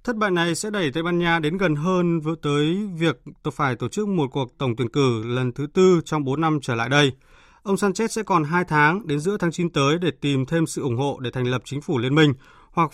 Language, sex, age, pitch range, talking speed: Vietnamese, male, 20-39, 130-170 Hz, 260 wpm